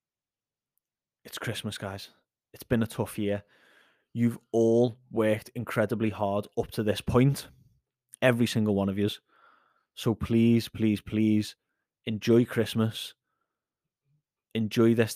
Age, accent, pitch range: 20-39, British, 110-135 Hz